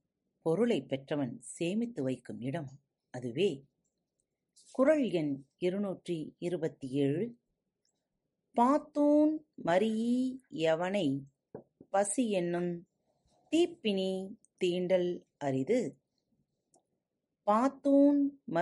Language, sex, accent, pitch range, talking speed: Tamil, female, native, 155-230 Hz, 40 wpm